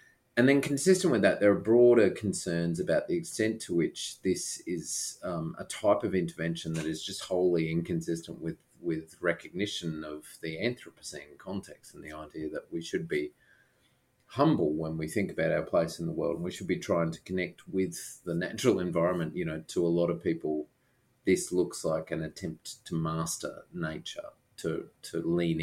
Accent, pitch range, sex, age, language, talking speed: Australian, 80-120 Hz, male, 30-49, English, 185 wpm